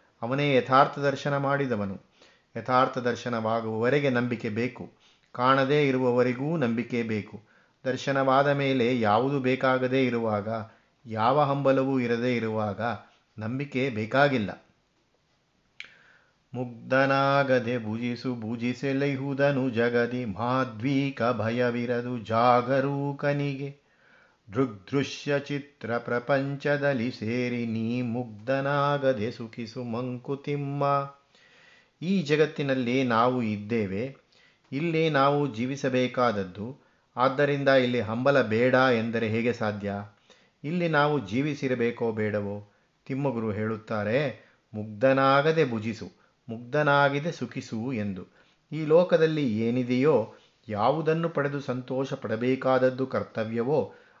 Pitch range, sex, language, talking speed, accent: 115-140 Hz, male, Kannada, 75 wpm, native